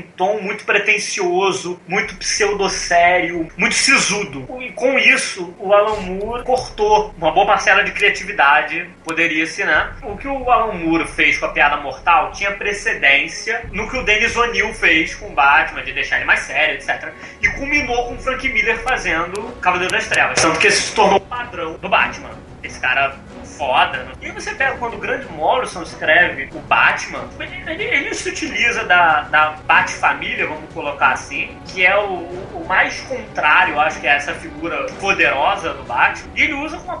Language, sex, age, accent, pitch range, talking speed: Portuguese, male, 20-39, Brazilian, 180-255 Hz, 180 wpm